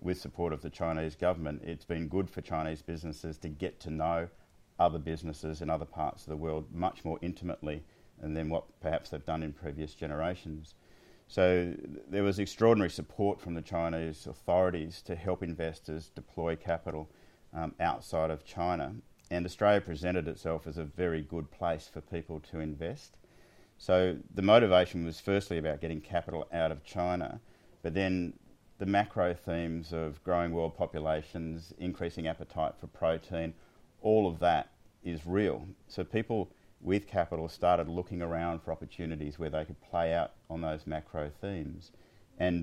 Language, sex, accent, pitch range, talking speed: English, male, Australian, 80-90 Hz, 160 wpm